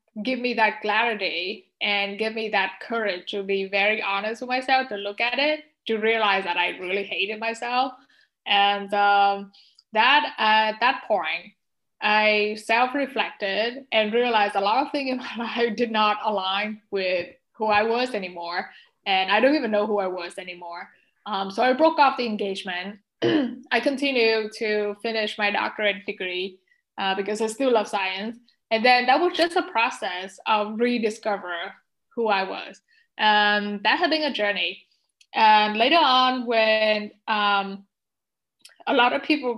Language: English